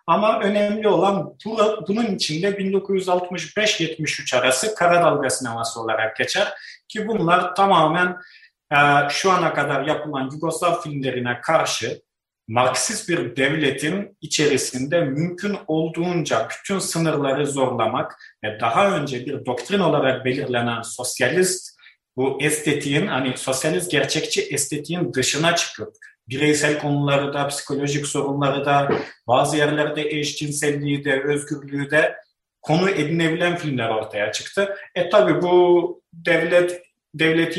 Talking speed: 110 wpm